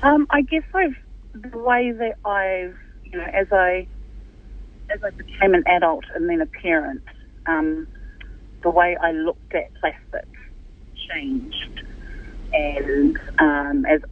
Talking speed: 135 wpm